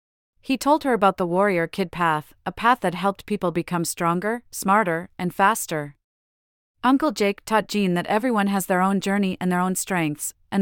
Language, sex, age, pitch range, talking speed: English, female, 30-49, 170-210 Hz, 180 wpm